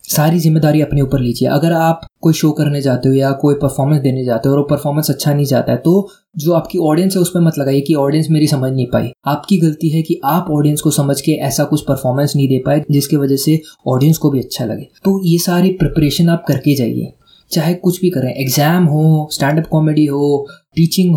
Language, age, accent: Hindi, 20-39, native